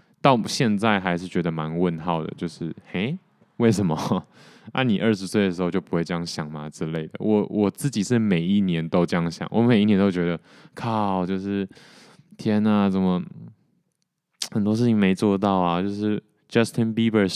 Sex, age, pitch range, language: male, 20-39, 85-115 Hz, Chinese